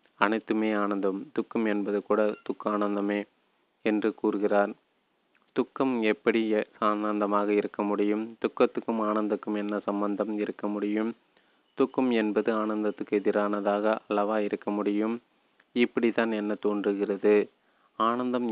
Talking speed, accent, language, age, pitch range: 100 wpm, native, Tamil, 30-49, 105-115 Hz